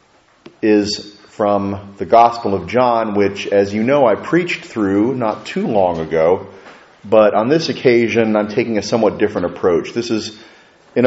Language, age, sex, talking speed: English, 30-49, male, 165 wpm